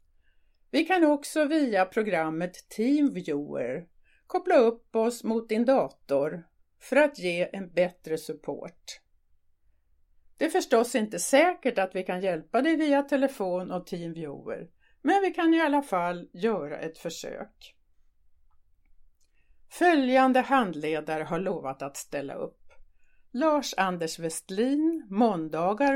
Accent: native